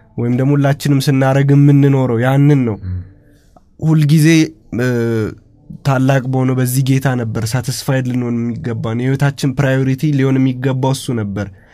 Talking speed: 65 wpm